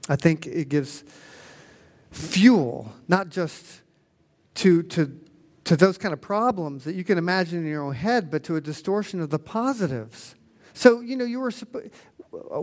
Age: 50-69